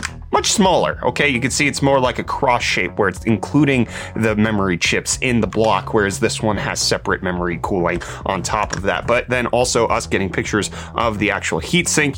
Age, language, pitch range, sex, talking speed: 30-49, English, 95-130 Hz, male, 205 wpm